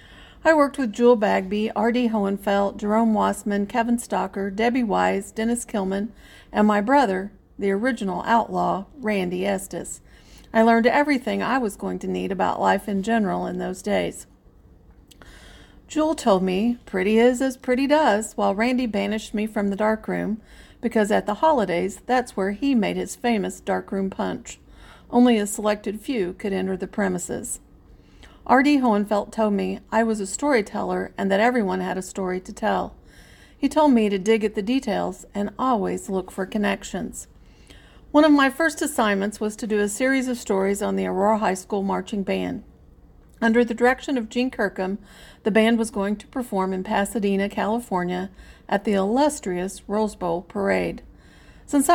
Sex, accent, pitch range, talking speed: female, American, 195-240 Hz, 165 wpm